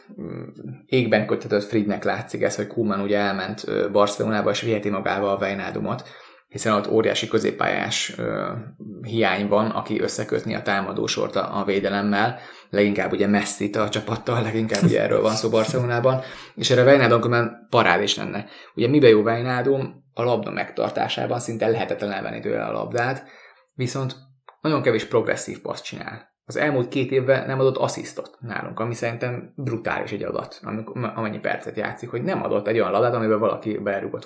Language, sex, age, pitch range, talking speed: English, male, 20-39, 105-125 Hz, 160 wpm